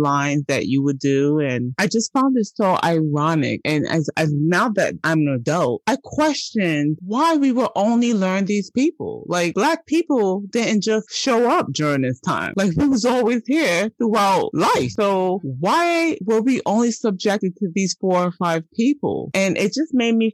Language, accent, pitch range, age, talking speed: English, American, 145-205 Hz, 30-49, 185 wpm